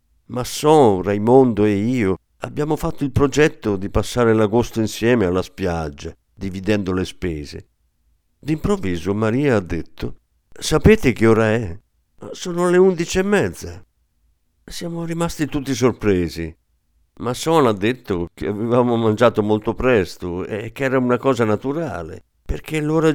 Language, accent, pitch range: Italian, native, 90-130 Hz